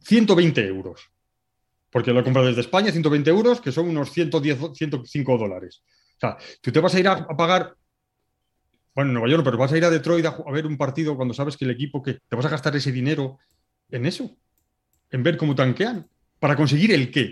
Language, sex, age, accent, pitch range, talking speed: Spanish, male, 30-49, Spanish, 125-185 Hz, 210 wpm